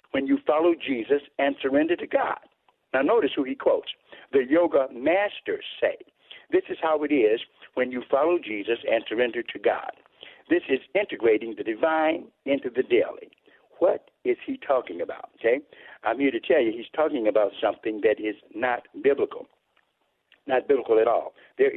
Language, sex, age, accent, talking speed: English, male, 60-79, American, 170 wpm